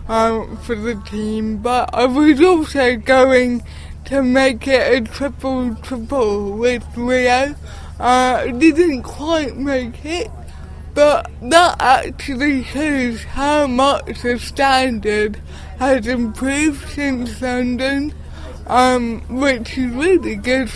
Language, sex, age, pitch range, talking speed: English, female, 20-39, 230-270 Hz, 110 wpm